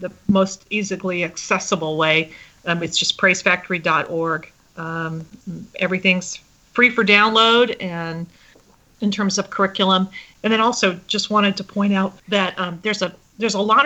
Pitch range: 170-195 Hz